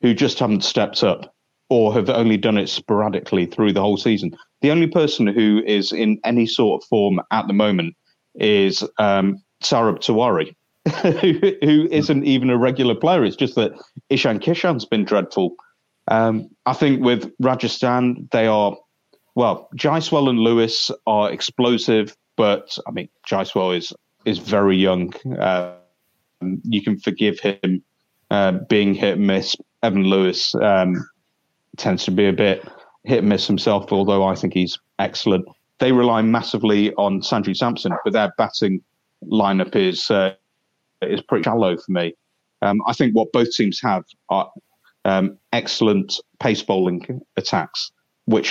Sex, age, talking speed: male, 30-49, 150 wpm